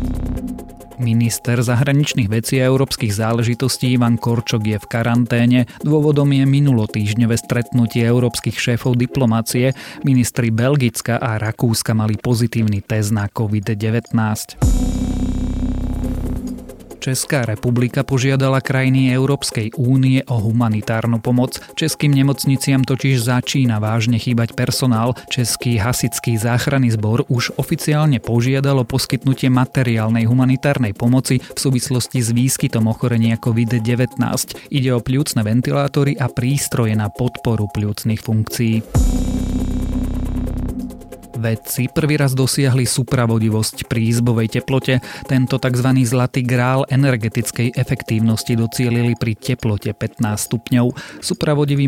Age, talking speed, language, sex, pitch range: 30-49, 105 wpm, Slovak, male, 115-135 Hz